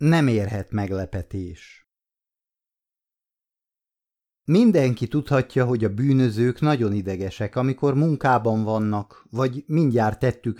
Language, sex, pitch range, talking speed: Hungarian, male, 105-140 Hz, 90 wpm